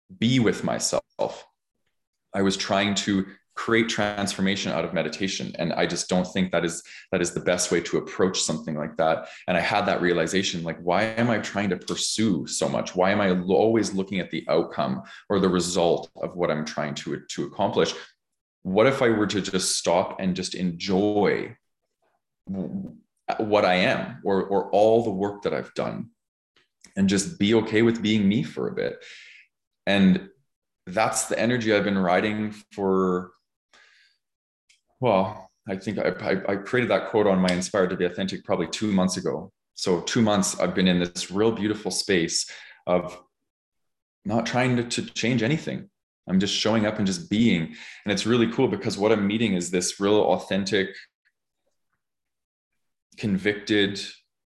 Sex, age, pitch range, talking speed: male, 20-39, 90-110 Hz, 170 wpm